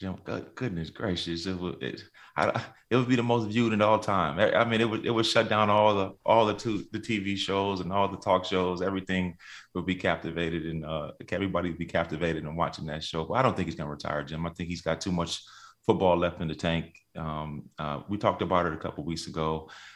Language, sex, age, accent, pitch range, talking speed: English, male, 30-49, American, 85-100 Hz, 245 wpm